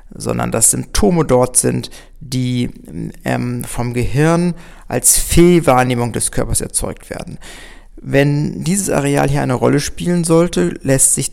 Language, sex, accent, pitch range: German, male, German, 110-150 Hz